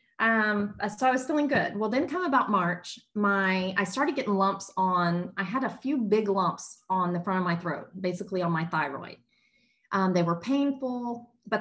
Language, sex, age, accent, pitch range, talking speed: English, female, 30-49, American, 185-240 Hz, 195 wpm